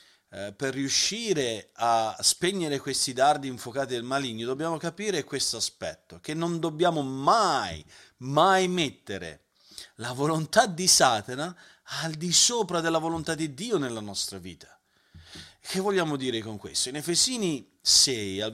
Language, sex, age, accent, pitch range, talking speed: Italian, male, 40-59, native, 135-190 Hz, 135 wpm